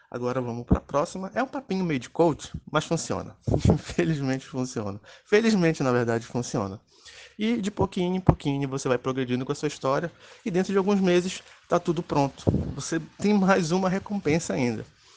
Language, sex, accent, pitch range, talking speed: Portuguese, male, Brazilian, 115-150 Hz, 180 wpm